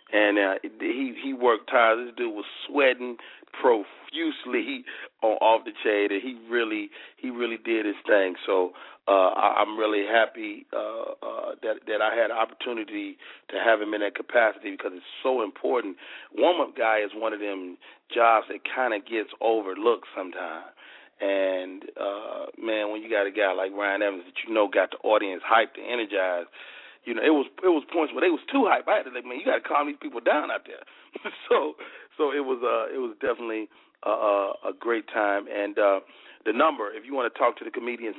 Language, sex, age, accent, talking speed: English, male, 40-59, American, 205 wpm